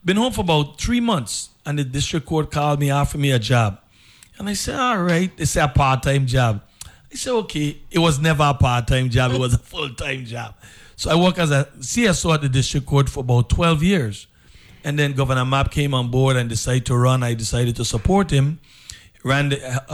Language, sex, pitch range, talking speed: English, male, 120-150 Hz, 220 wpm